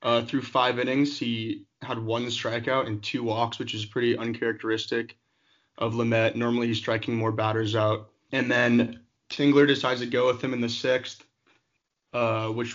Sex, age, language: male, 20-39, English